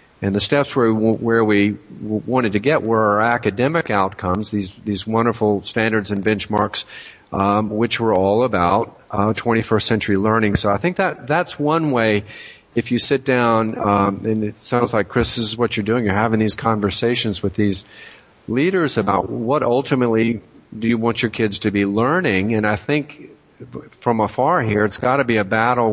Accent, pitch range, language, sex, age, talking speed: American, 105-120 Hz, English, male, 50-69, 190 wpm